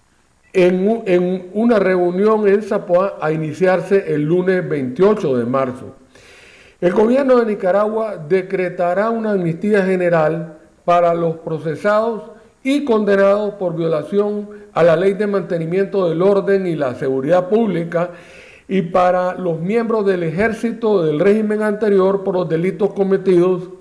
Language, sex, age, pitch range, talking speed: Spanish, male, 50-69, 165-210 Hz, 130 wpm